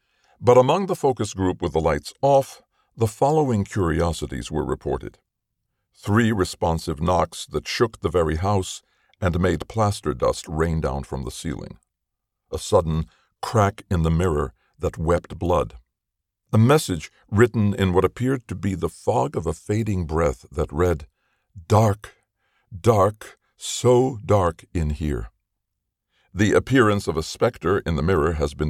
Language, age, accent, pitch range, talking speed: English, 60-79, American, 75-100 Hz, 150 wpm